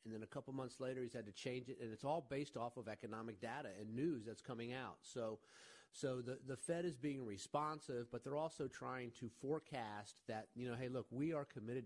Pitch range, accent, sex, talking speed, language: 115-140 Hz, American, male, 235 wpm, English